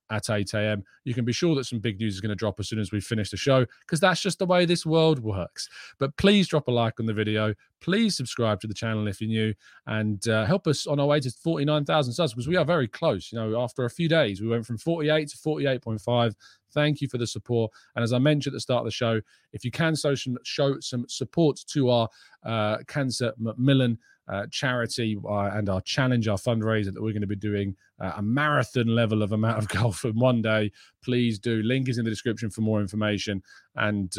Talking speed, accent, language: 235 wpm, British, English